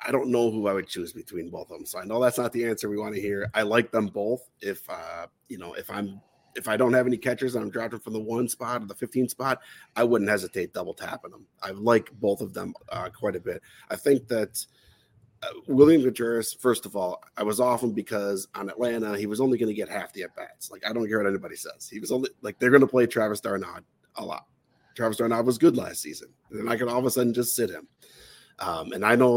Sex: male